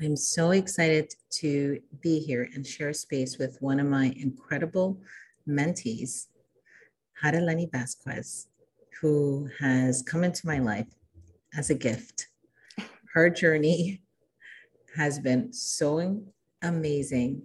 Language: English